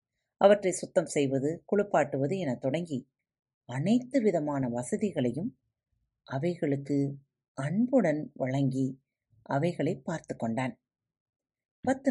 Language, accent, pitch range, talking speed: Tamil, native, 130-190 Hz, 80 wpm